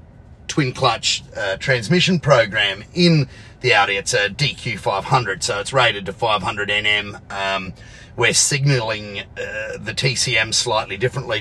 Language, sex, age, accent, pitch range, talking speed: English, male, 30-49, Australian, 110-140 Hz, 135 wpm